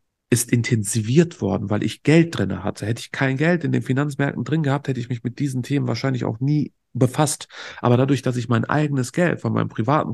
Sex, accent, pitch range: male, German, 105-135 Hz